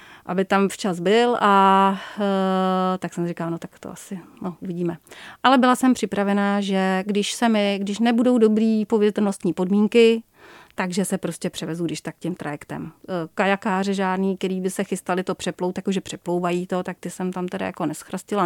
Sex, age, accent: female, 30-49, native